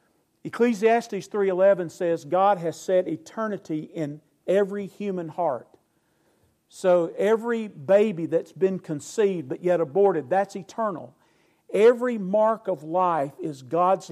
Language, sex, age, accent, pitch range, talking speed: English, male, 50-69, American, 150-195 Hz, 120 wpm